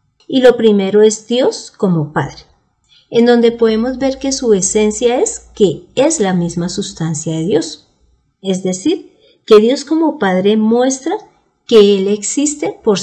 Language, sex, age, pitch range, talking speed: Spanish, female, 40-59, 180-255 Hz, 150 wpm